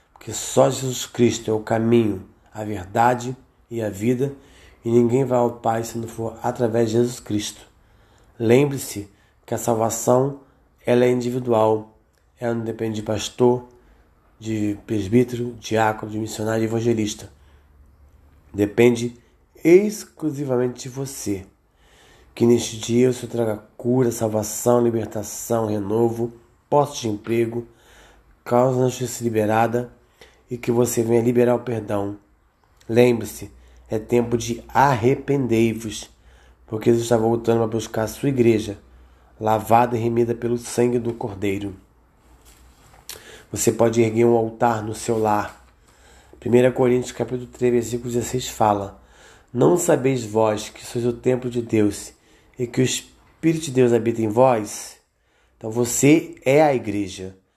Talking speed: 135 wpm